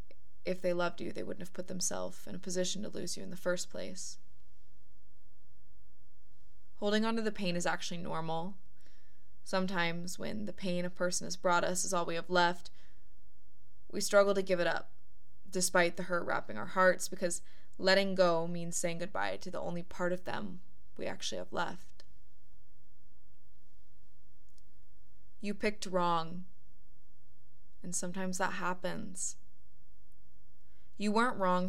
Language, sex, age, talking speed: English, female, 20-39, 150 wpm